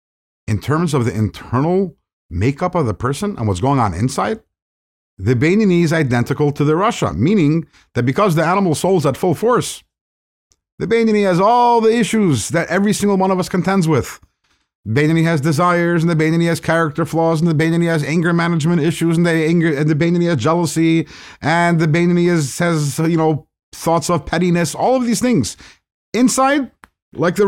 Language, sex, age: English, male, 50-69